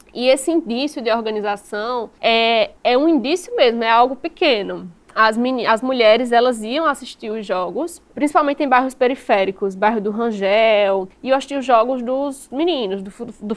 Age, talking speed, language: 10-29, 160 wpm, Portuguese